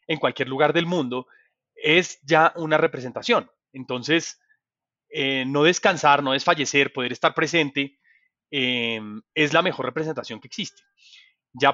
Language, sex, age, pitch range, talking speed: English, male, 30-49, 125-165 Hz, 135 wpm